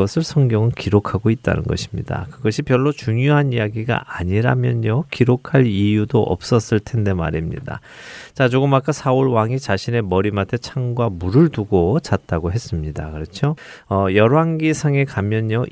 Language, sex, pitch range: Korean, male, 100-130 Hz